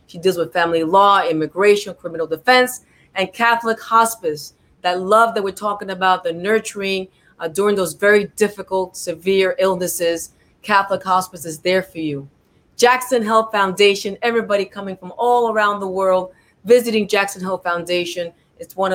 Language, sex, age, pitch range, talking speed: English, female, 30-49, 180-215 Hz, 150 wpm